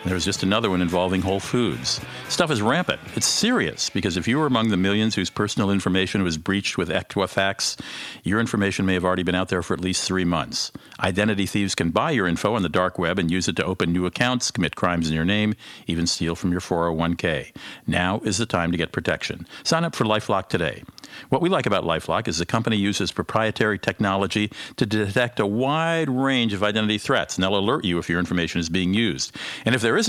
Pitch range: 90-105 Hz